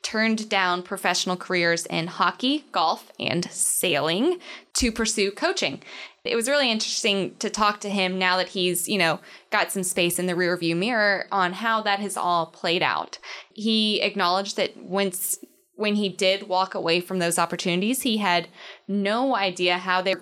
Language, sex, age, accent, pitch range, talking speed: English, female, 10-29, American, 175-205 Hz, 175 wpm